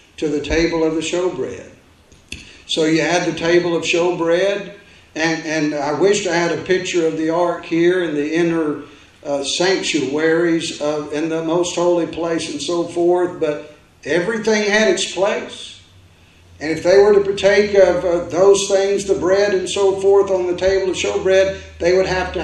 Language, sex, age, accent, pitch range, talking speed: English, male, 60-79, American, 160-195 Hz, 185 wpm